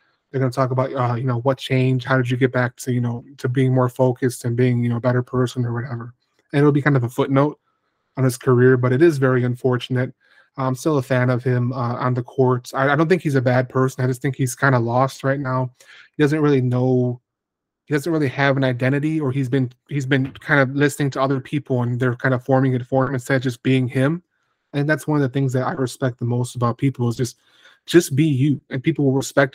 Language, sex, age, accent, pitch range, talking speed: English, male, 20-39, American, 125-140 Hz, 260 wpm